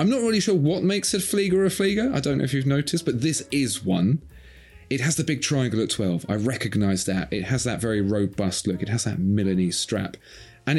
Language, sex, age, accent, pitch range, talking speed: English, male, 30-49, British, 95-130 Hz, 235 wpm